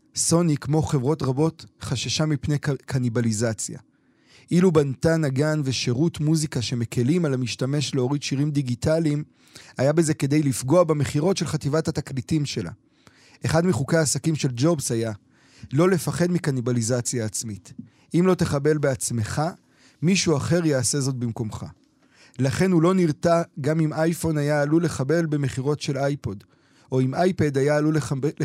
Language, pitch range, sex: Hebrew, 130-160 Hz, male